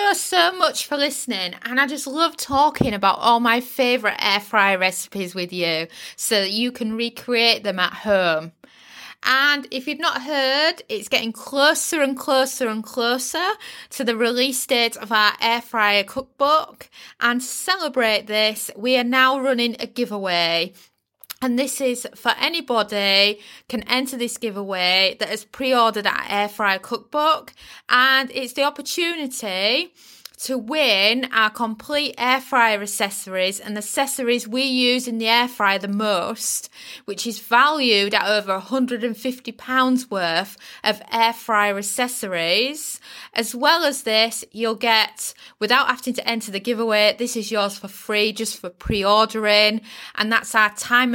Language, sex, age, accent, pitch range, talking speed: English, female, 20-39, British, 210-265 Hz, 150 wpm